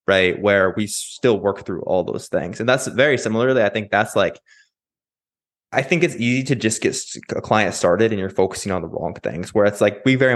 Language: English